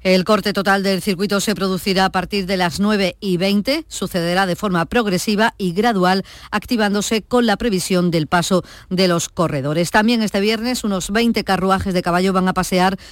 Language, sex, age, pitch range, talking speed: Spanish, female, 40-59, 180-210 Hz, 185 wpm